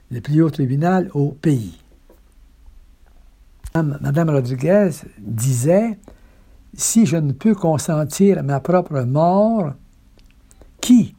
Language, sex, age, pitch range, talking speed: French, male, 60-79, 130-180 Hz, 100 wpm